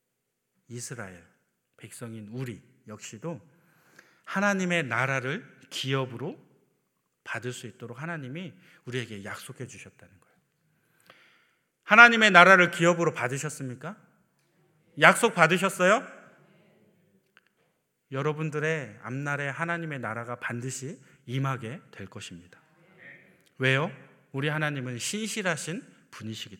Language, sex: Korean, male